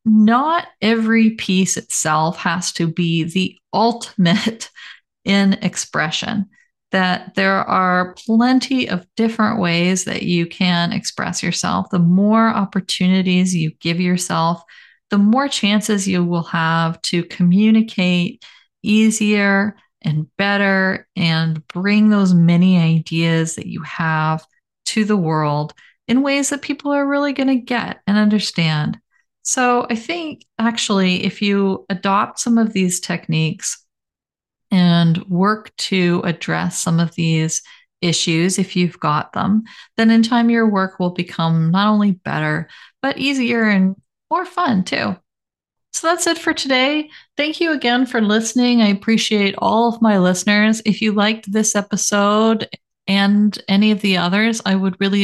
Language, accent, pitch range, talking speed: English, American, 180-225 Hz, 140 wpm